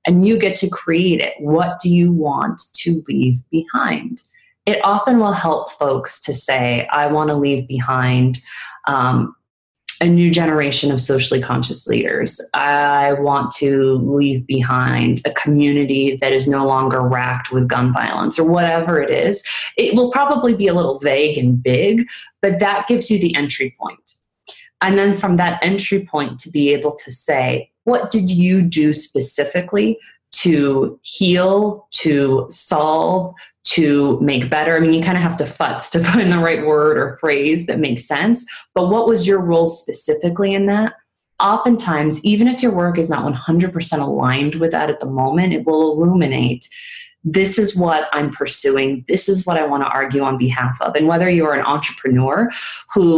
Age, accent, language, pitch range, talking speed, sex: 30-49, American, English, 135-185 Hz, 175 wpm, female